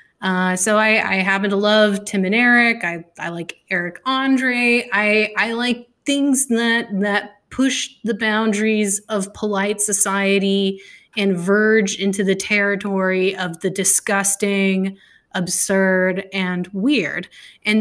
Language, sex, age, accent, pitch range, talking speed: English, female, 20-39, American, 190-225 Hz, 130 wpm